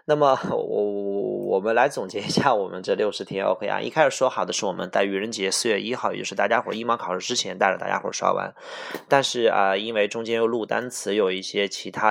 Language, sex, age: Chinese, male, 20-39